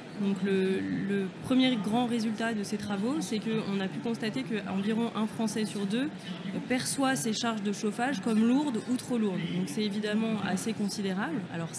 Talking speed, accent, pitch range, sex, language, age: 180 wpm, French, 195-230 Hz, female, French, 20-39